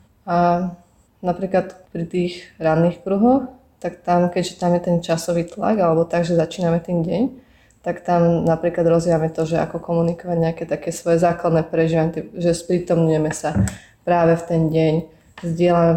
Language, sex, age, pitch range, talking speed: Slovak, female, 20-39, 165-180 Hz, 155 wpm